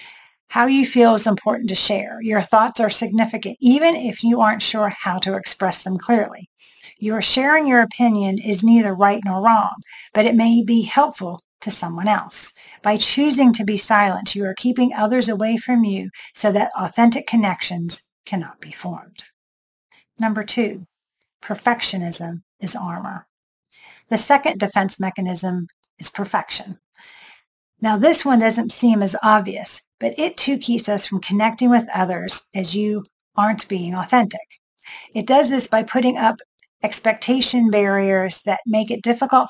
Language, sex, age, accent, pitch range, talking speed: English, female, 40-59, American, 200-235 Hz, 155 wpm